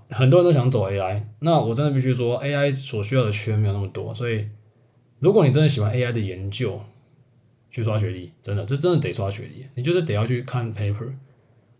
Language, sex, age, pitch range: Chinese, male, 20-39, 110-135 Hz